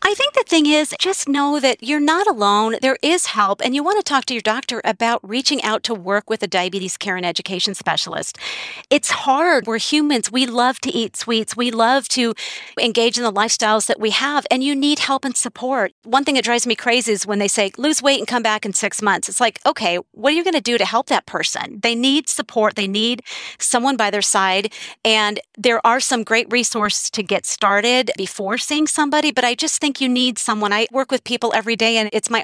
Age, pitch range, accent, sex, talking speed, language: 40-59, 195-250 Hz, American, female, 235 wpm, English